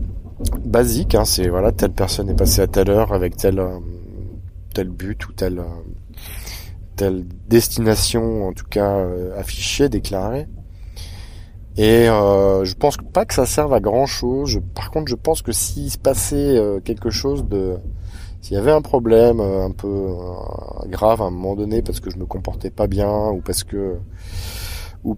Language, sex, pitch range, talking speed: French, male, 95-105 Hz, 160 wpm